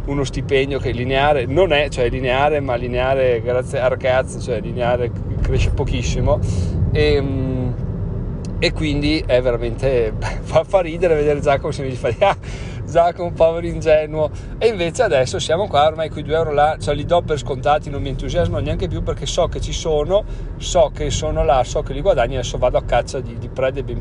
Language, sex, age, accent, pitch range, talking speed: Italian, male, 40-59, native, 120-155 Hz, 190 wpm